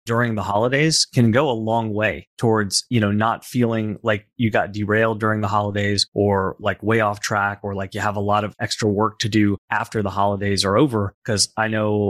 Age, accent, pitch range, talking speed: 30-49, American, 100-115 Hz, 220 wpm